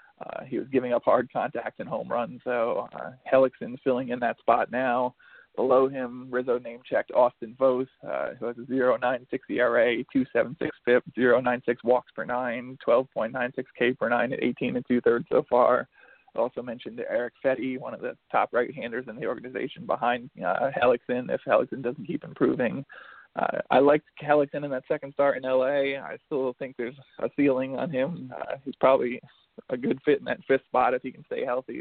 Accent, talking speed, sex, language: American, 190 wpm, male, English